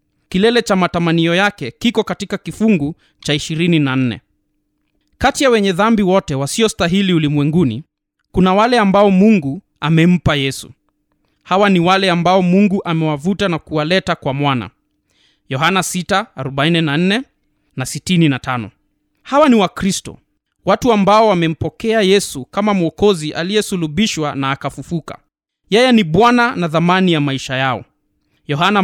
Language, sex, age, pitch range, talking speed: Swahili, male, 20-39, 150-205 Hz, 120 wpm